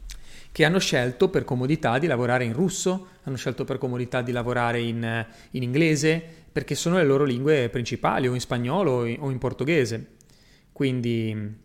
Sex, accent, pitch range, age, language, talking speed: male, native, 120-150 Hz, 30-49, Italian, 160 wpm